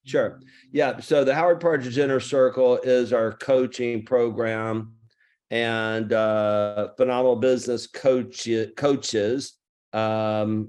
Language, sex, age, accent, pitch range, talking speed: English, male, 50-69, American, 105-115 Hz, 105 wpm